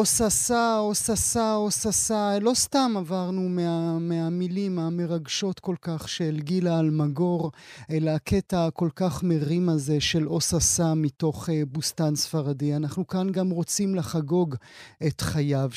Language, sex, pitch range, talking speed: Hebrew, male, 145-180 Hz, 130 wpm